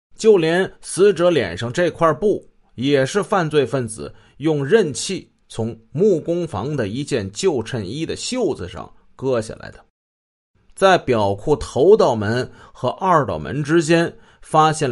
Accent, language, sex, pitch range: native, Chinese, male, 110-170 Hz